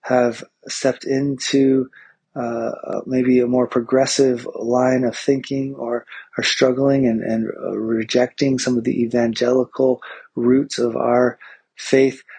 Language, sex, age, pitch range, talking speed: English, male, 30-49, 125-145 Hz, 120 wpm